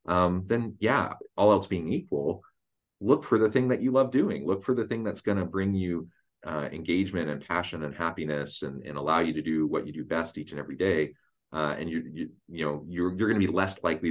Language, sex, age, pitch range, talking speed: English, male, 30-49, 75-95 Hz, 245 wpm